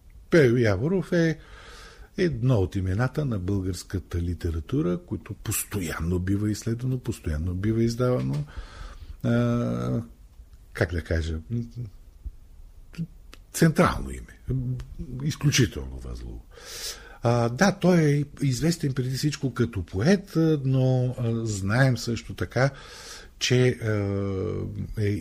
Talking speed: 90 wpm